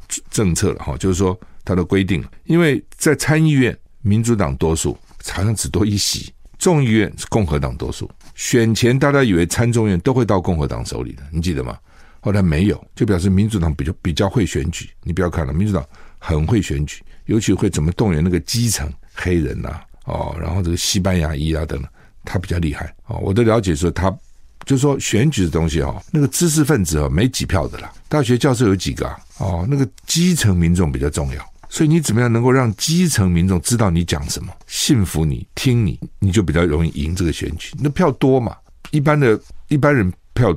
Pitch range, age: 80-120 Hz, 50-69